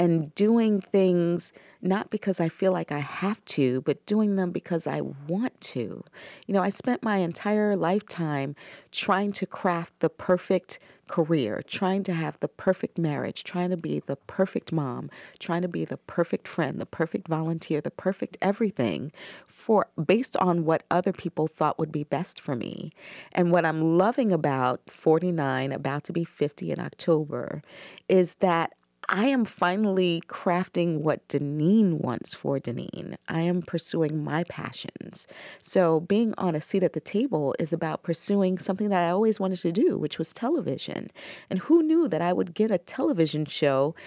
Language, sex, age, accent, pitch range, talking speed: English, female, 40-59, American, 160-200 Hz, 170 wpm